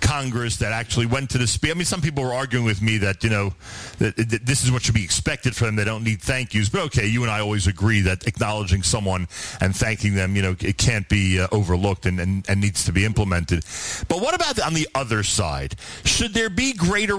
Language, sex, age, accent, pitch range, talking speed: English, male, 40-59, American, 110-160 Hz, 235 wpm